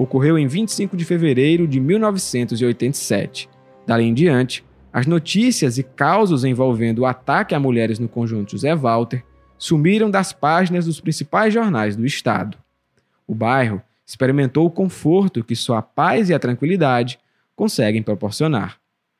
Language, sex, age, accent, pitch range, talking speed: English, male, 20-39, Brazilian, 115-170 Hz, 140 wpm